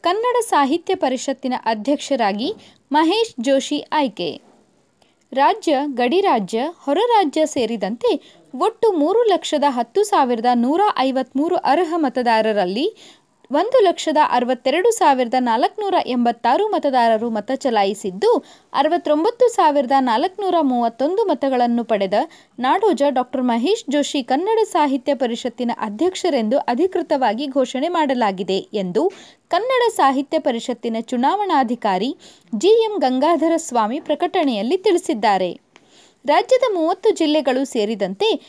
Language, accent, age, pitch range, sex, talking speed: Kannada, native, 20-39, 250-355 Hz, female, 85 wpm